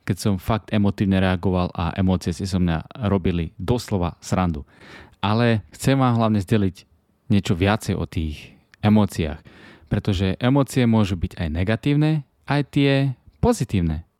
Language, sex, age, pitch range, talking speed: Slovak, male, 20-39, 90-120 Hz, 135 wpm